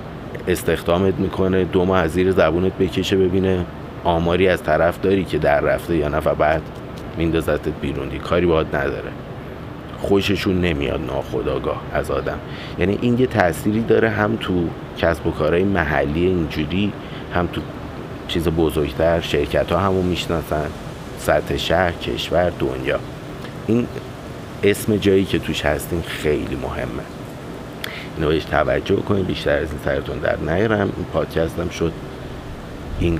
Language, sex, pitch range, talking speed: Persian, male, 80-95 Hz, 130 wpm